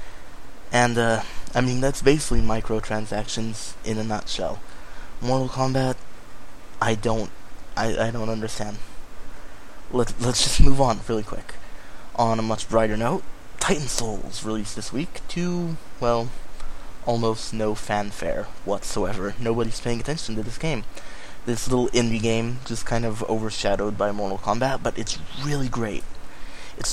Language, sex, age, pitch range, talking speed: English, male, 20-39, 110-130 Hz, 140 wpm